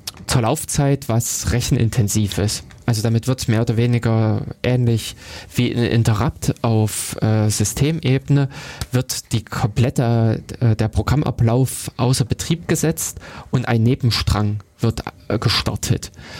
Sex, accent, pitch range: male, German, 110-135 Hz